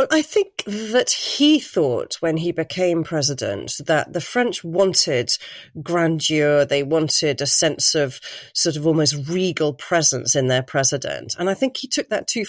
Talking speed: 165 wpm